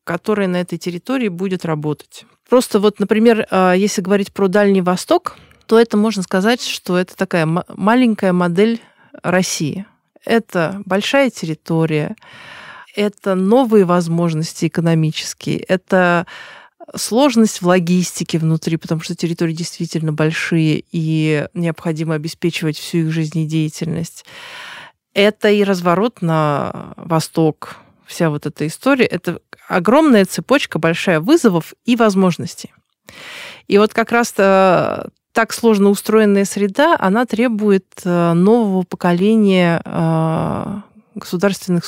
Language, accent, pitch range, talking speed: Russian, native, 170-215 Hz, 110 wpm